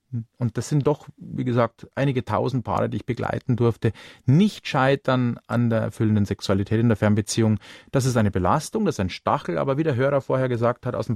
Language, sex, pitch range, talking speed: German, male, 120-155 Hz, 210 wpm